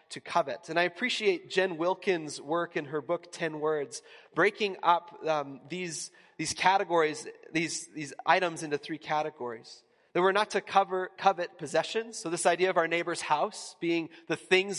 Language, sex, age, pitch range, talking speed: English, male, 30-49, 155-185 Hz, 170 wpm